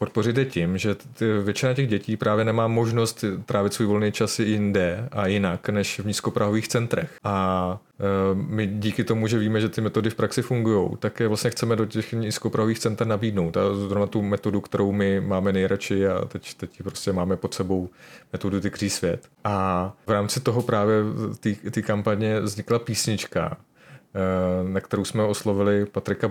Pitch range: 100-110 Hz